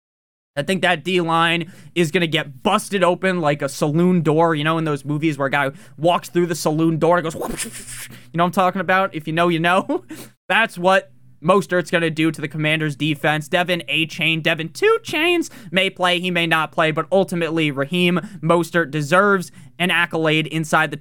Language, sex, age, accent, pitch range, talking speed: English, male, 20-39, American, 160-195 Hz, 205 wpm